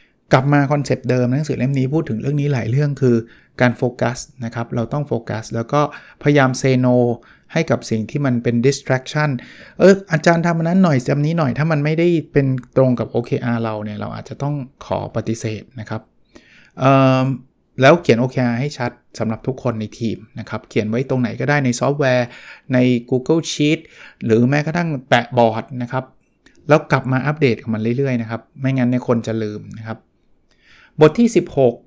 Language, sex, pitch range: Thai, male, 115-145 Hz